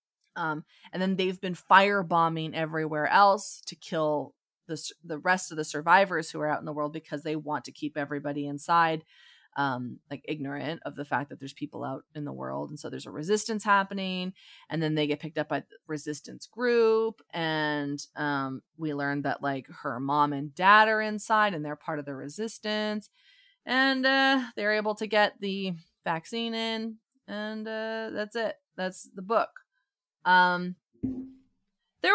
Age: 30-49